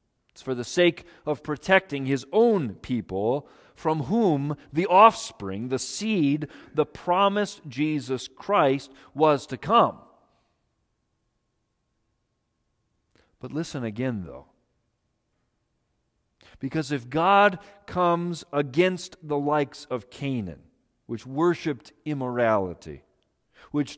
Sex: male